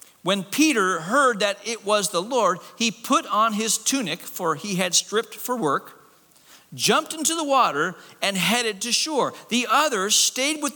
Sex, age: male, 50-69